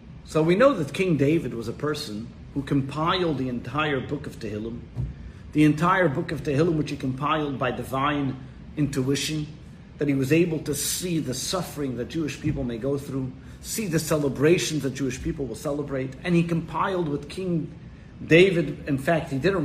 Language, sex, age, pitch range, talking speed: English, male, 50-69, 135-170 Hz, 180 wpm